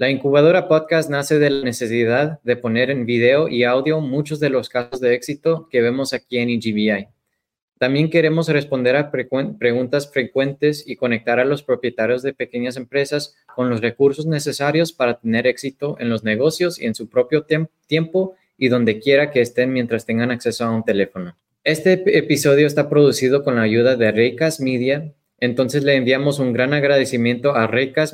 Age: 20-39